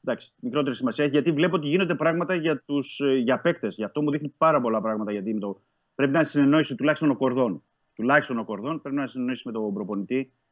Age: 30-49